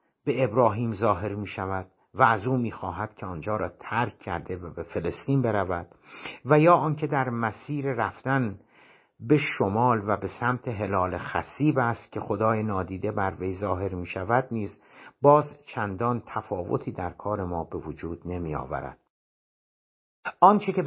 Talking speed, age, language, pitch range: 150 wpm, 60-79, Persian, 95-130 Hz